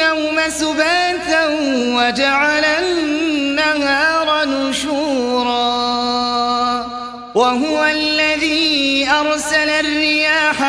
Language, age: Arabic, 30-49